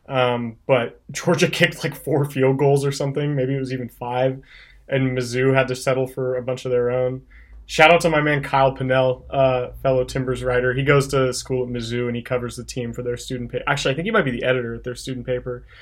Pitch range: 125-140 Hz